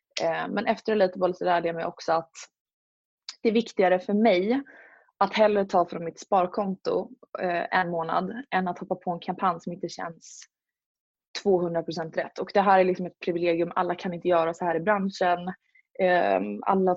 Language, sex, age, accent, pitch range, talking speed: Swedish, female, 20-39, native, 170-205 Hz, 170 wpm